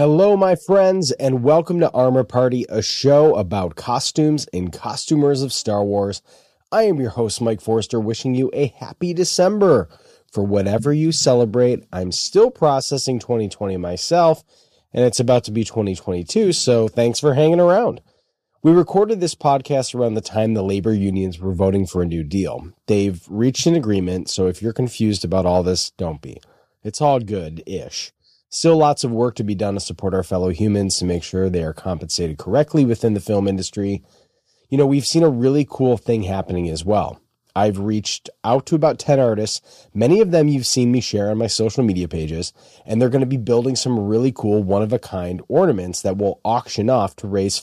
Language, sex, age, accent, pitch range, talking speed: English, male, 30-49, American, 100-135 Hz, 190 wpm